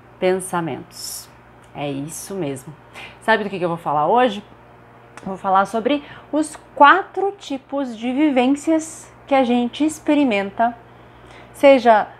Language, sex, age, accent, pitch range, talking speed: Portuguese, female, 30-49, Brazilian, 175-245 Hz, 120 wpm